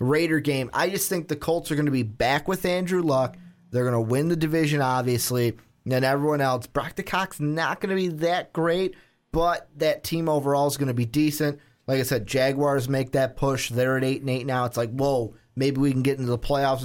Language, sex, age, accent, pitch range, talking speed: English, male, 30-49, American, 125-160 Hz, 235 wpm